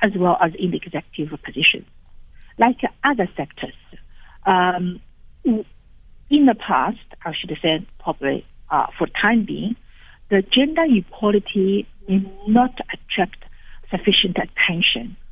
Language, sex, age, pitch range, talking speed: English, female, 60-79, 165-230 Hz, 120 wpm